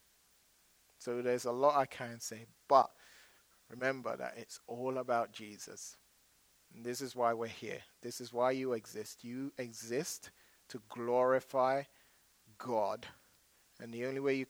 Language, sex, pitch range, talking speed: English, male, 115-135 Hz, 145 wpm